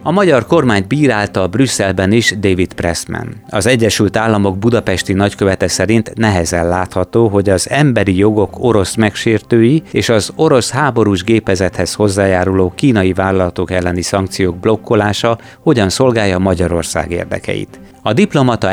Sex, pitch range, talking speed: male, 90-115 Hz, 130 wpm